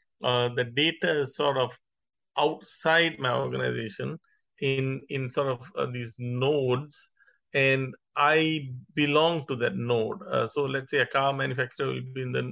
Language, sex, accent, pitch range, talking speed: English, male, Indian, 125-145 Hz, 160 wpm